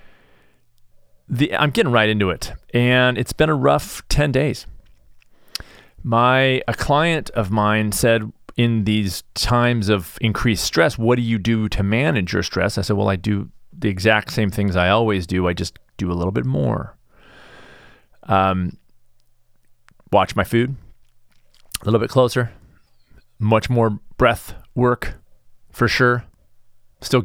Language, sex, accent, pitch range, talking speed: English, male, American, 100-125 Hz, 150 wpm